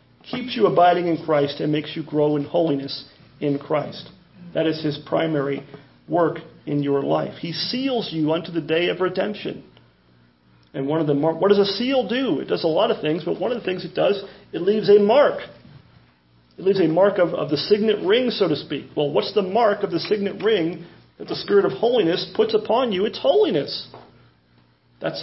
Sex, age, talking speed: male, 40-59, 205 wpm